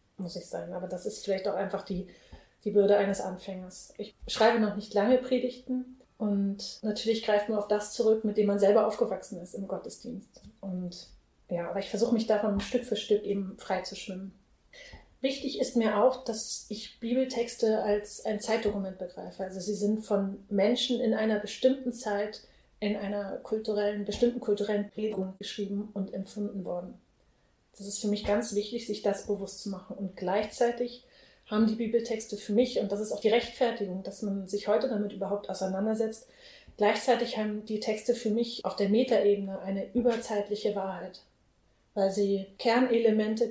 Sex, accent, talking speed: female, German, 170 wpm